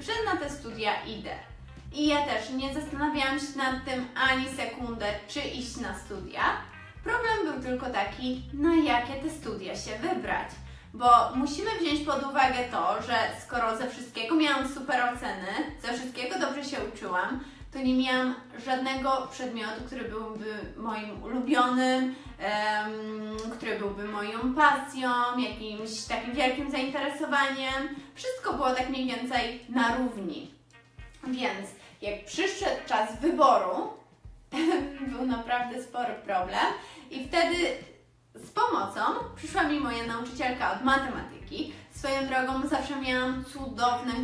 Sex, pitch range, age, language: female, 220-275 Hz, 20-39, Polish